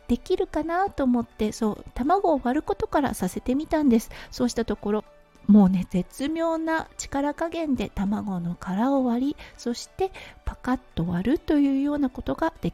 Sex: female